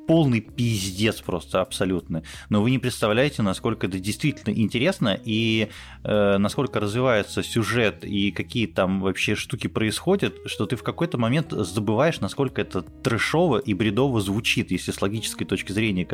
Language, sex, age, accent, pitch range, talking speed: Russian, male, 20-39, native, 95-120 Hz, 150 wpm